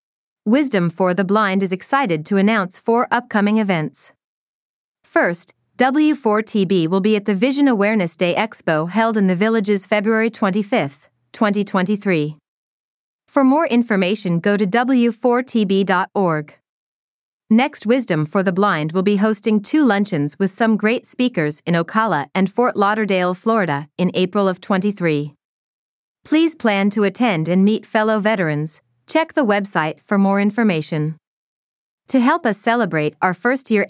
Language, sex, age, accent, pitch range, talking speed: English, female, 30-49, American, 180-225 Hz, 140 wpm